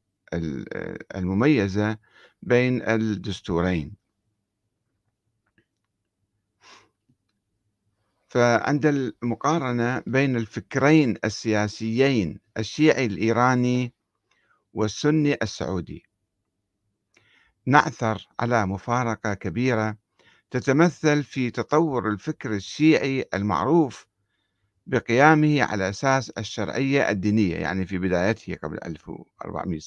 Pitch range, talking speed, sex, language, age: 100-130 Hz, 65 wpm, male, Arabic, 50-69